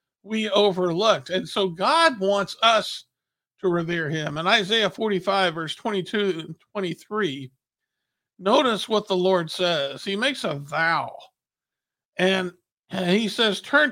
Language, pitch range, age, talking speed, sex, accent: English, 165-210 Hz, 50-69, 125 wpm, male, American